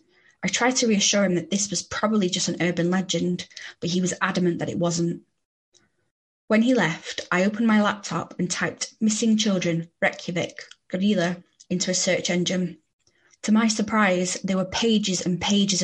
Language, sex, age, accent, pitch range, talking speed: English, female, 20-39, British, 175-205 Hz, 170 wpm